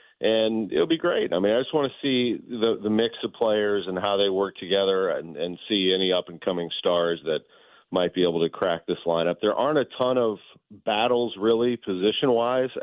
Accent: American